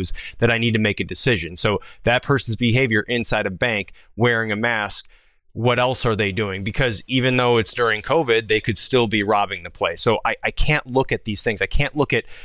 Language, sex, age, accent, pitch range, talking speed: English, male, 30-49, American, 105-125 Hz, 225 wpm